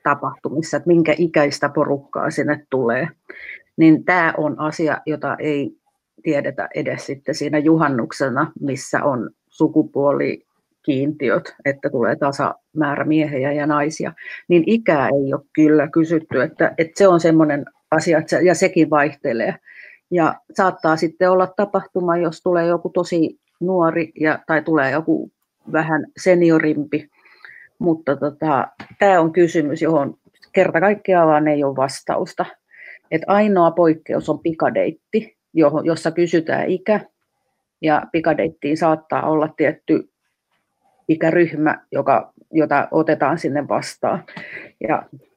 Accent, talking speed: native, 120 wpm